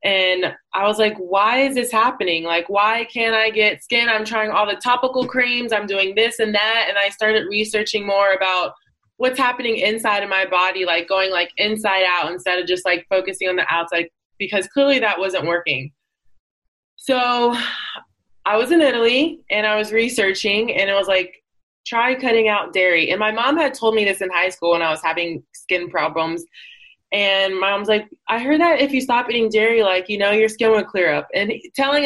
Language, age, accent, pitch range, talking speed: English, 20-39, American, 185-235 Hz, 205 wpm